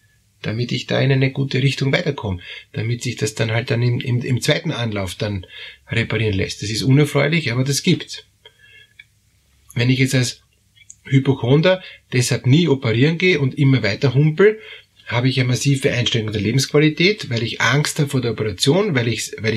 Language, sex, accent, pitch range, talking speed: German, male, Austrian, 115-145 Hz, 180 wpm